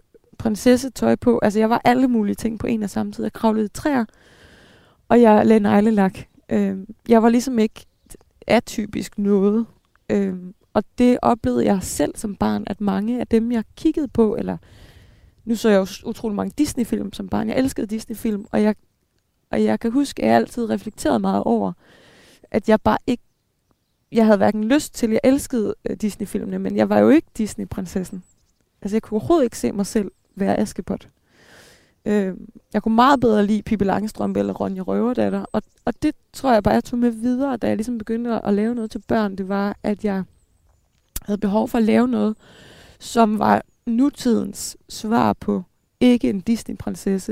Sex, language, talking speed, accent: female, Danish, 185 wpm, native